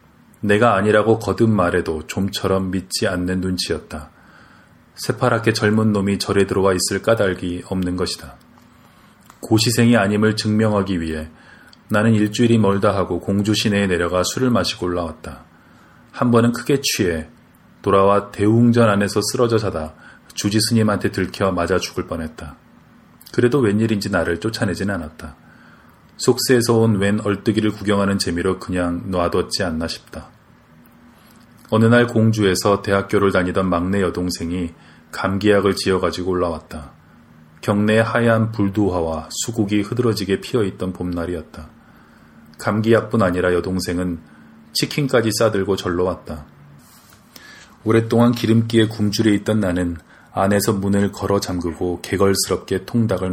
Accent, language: native, Korean